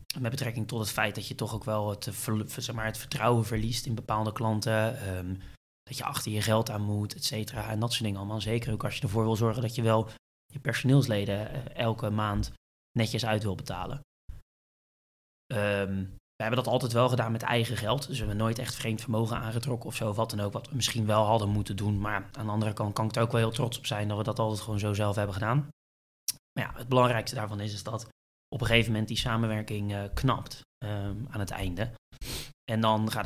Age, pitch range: 20-39, 100-115 Hz